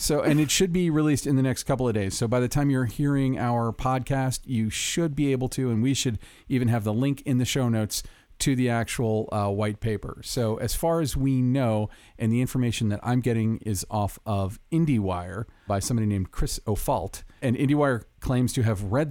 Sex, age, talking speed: male, 40-59, 215 wpm